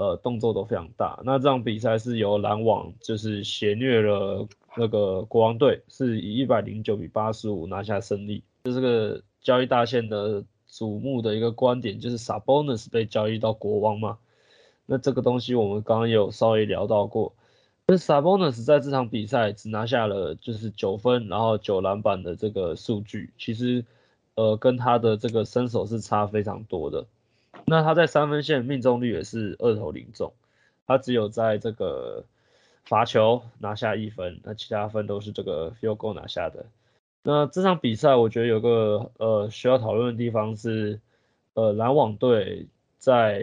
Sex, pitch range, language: male, 105-125 Hz, Chinese